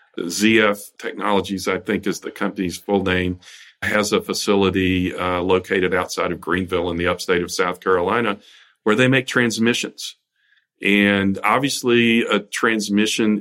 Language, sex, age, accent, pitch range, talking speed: English, male, 40-59, American, 95-105 Hz, 140 wpm